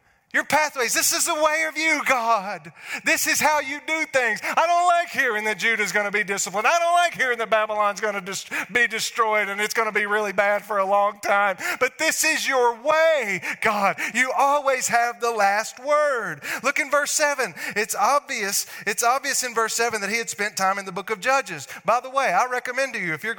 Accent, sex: American, male